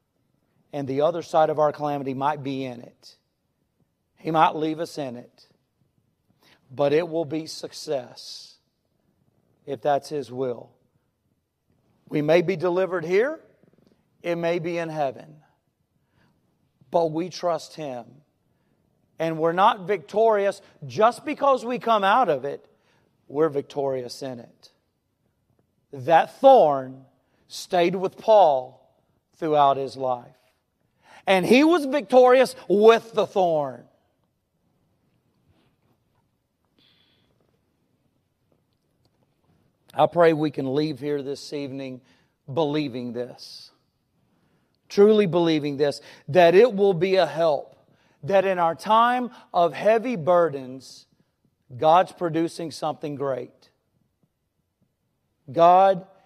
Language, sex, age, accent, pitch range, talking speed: English, male, 40-59, American, 140-190 Hz, 110 wpm